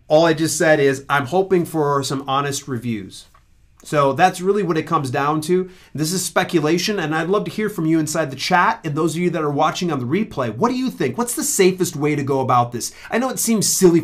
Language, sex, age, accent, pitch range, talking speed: English, male, 30-49, American, 135-180 Hz, 250 wpm